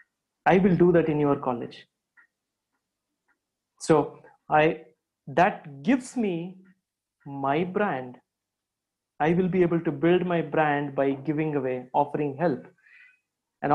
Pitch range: 145-195 Hz